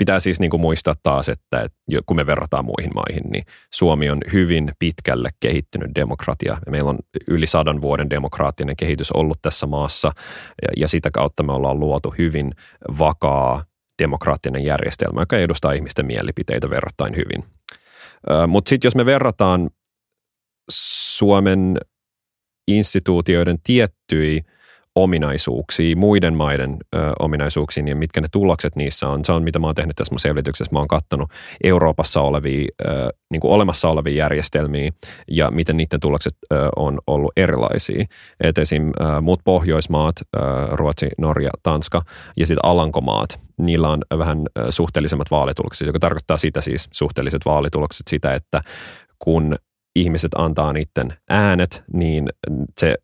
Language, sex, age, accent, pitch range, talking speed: Finnish, male, 30-49, native, 75-85 Hz, 135 wpm